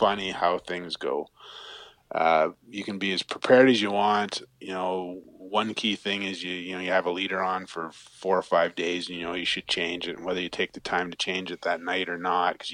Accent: American